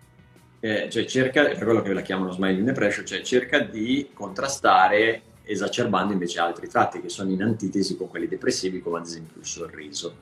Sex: male